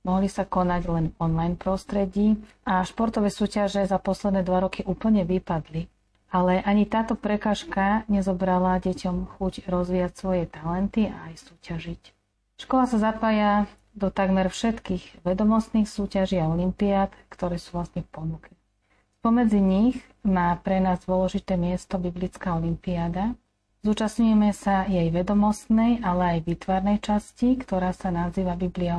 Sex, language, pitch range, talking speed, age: female, Slovak, 180-210 Hz, 130 wpm, 40-59